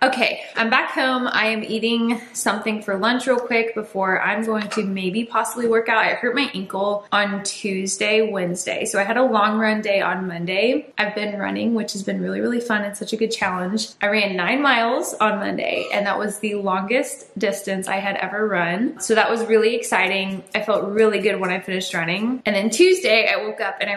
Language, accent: English, American